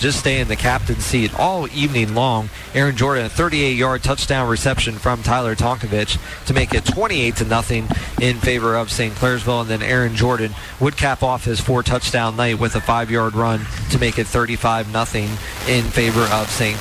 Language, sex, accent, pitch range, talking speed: English, male, American, 110-130 Hz, 175 wpm